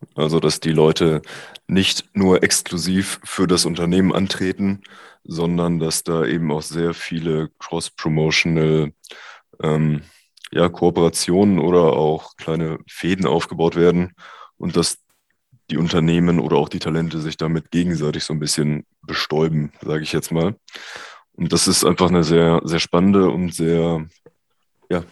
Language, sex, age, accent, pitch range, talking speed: German, male, 20-39, German, 80-90 Hz, 140 wpm